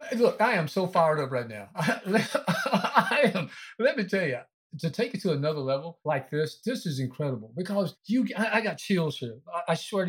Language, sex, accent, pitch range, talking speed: English, male, American, 130-180 Hz, 215 wpm